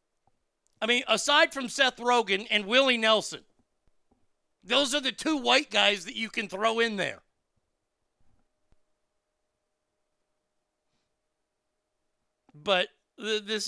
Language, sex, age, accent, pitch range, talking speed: English, male, 50-69, American, 165-210 Hz, 100 wpm